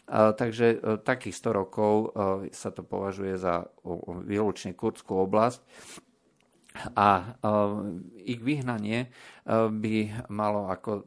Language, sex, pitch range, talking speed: Slovak, male, 95-110 Hz, 90 wpm